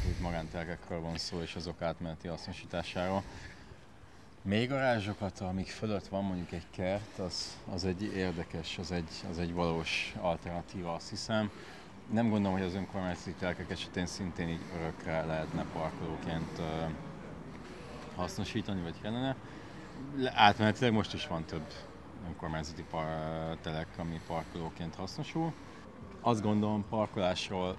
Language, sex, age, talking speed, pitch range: Hungarian, male, 30-49, 130 wpm, 85-105 Hz